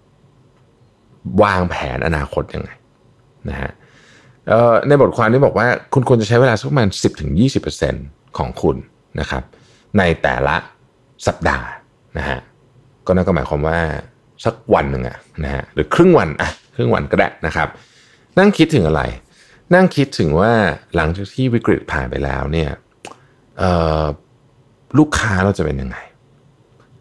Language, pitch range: Thai, 75-120 Hz